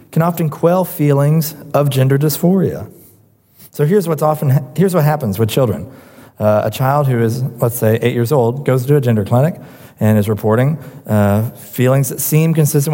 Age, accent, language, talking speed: 40-59, American, English, 180 wpm